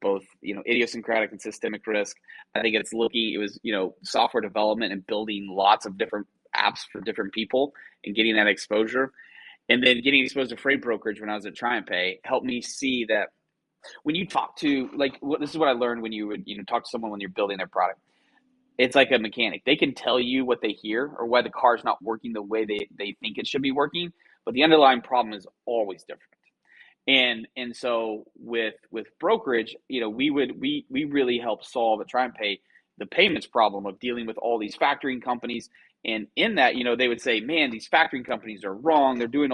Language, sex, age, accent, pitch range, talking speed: English, male, 20-39, American, 110-135 Hz, 230 wpm